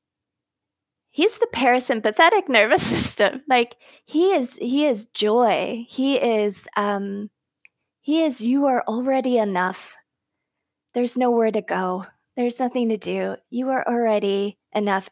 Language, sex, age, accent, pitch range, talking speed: English, female, 20-39, American, 210-265 Hz, 125 wpm